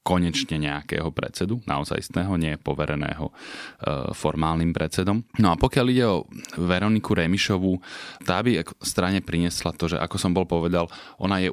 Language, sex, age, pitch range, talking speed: Slovak, male, 30-49, 75-90 Hz, 150 wpm